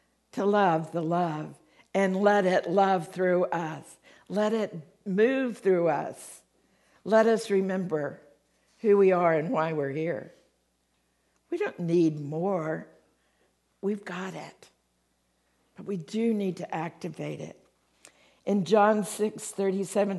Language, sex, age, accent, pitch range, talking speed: English, female, 60-79, American, 160-210 Hz, 130 wpm